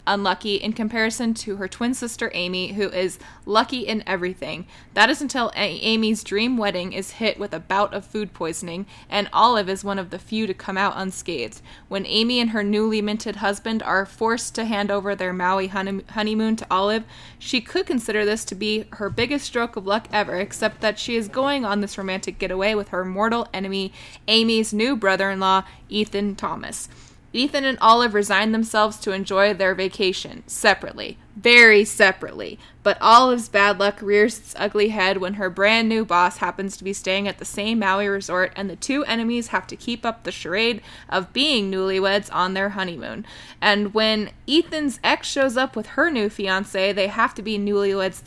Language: English